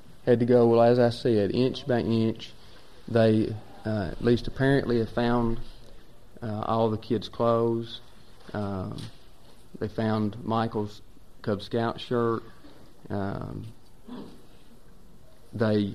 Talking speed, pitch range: 115 wpm, 105-120 Hz